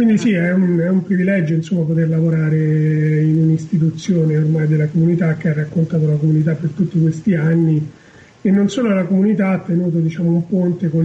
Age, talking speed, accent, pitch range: 30-49, 190 wpm, native, 165-195 Hz